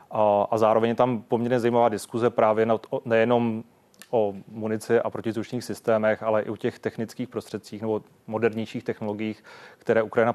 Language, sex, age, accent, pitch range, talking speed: Czech, male, 30-49, native, 105-115 Hz, 145 wpm